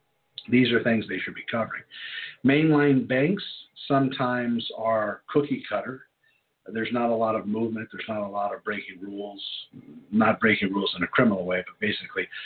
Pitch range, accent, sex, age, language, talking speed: 105-135 Hz, American, male, 50-69, English, 170 wpm